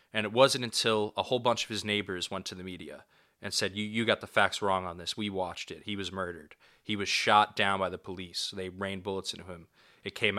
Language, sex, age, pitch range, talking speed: English, male, 20-39, 95-110 Hz, 255 wpm